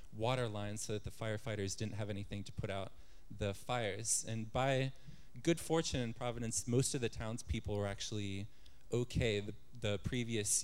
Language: English